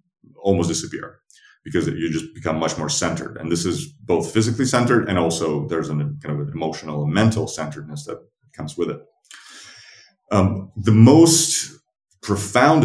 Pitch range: 80-105 Hz